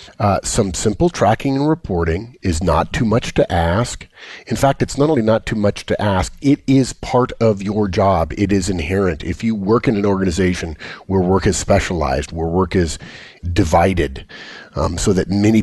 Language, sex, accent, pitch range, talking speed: English, male, American, 85-110 Hz, 190 wpm